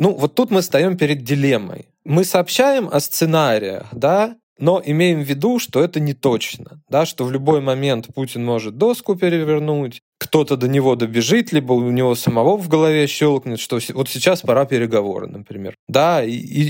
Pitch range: 115-155 Hz